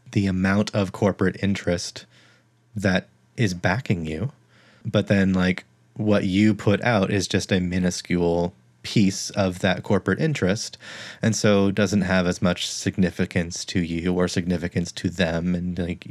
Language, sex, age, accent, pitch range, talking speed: English, male, 30-49, American, 90-105 Hz, 150 wpm